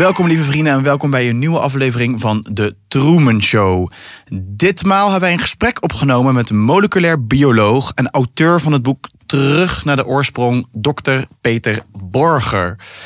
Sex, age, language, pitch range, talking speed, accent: male, 20-39, English, 110-140 Hz, 160 wpm, Dutch